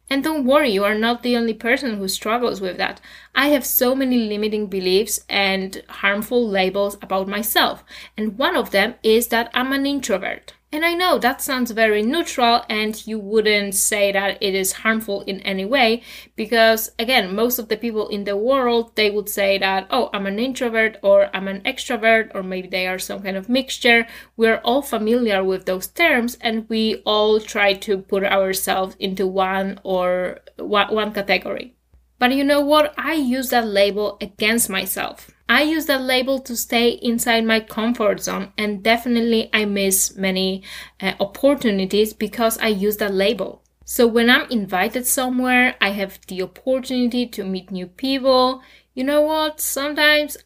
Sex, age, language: female, 20-39, English